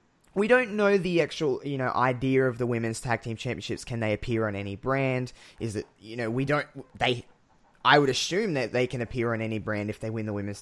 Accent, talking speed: Australian, 235 wpm